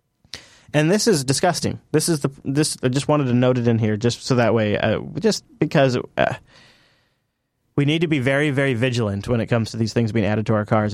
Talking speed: 240 wpm